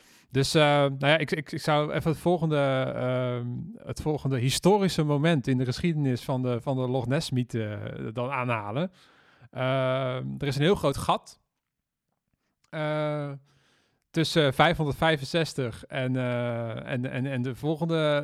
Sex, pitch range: male, 130-155 Hz